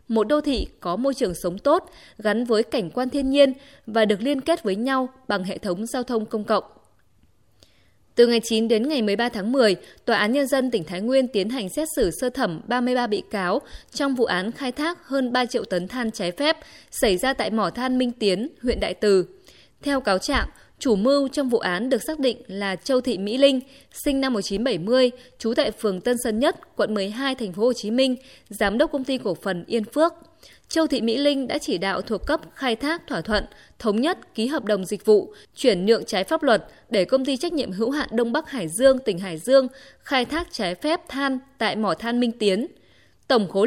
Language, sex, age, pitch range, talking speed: Vietnamese, female, 20-39, 205-275 Hz, 220 wpm